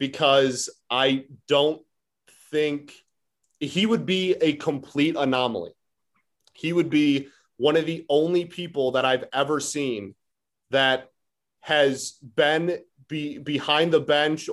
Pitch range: 130-165 Hz